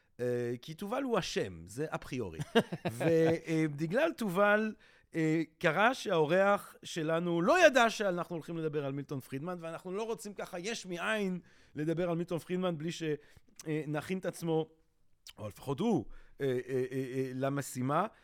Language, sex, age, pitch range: Hebrew, male, 40-59, 135-190 Hz